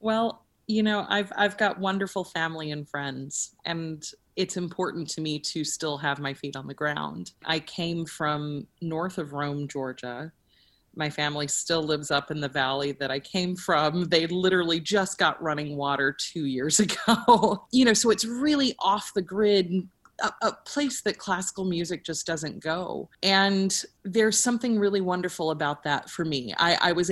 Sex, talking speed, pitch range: female, 175 wpm, 155-195 Hz